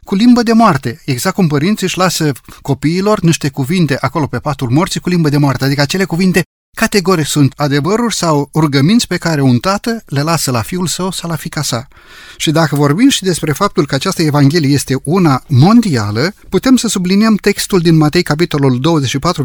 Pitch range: 125-175 Hz